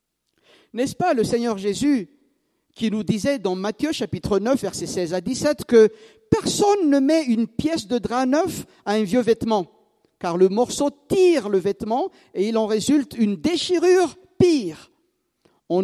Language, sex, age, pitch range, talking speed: French, male, 50-69, 205-320 Hz, 165 wpm